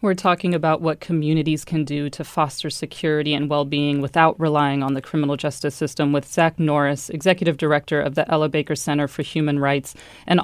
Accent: American